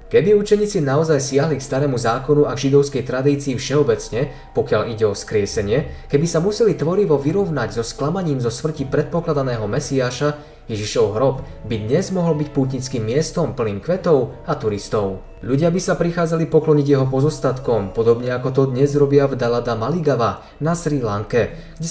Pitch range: 120-155 Hz